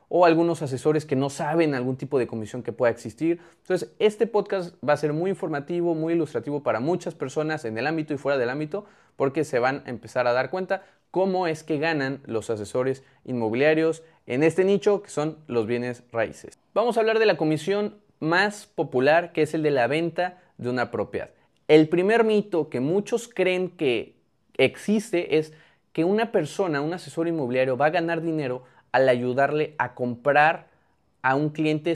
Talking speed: 185 wpm